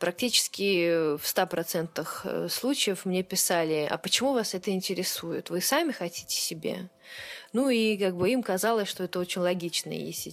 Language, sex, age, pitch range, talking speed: Russian, female, 20-39, 170-210 Hz, 150 wpm